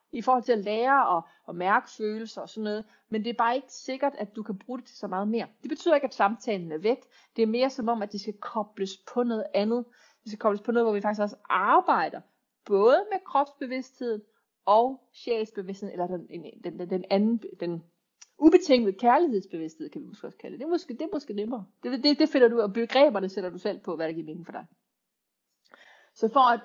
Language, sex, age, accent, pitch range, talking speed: Danish, female, 30-49, native, 195-240 Hz, 225 wpm